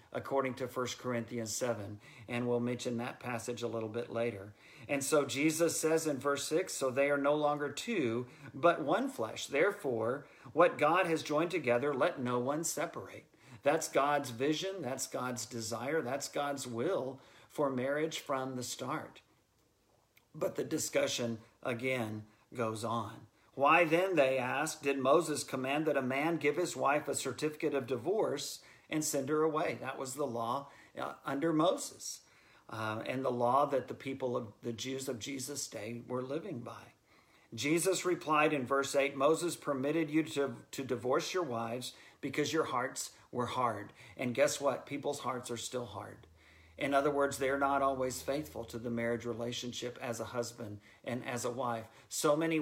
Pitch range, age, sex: 120-145 Hz, 50-69, male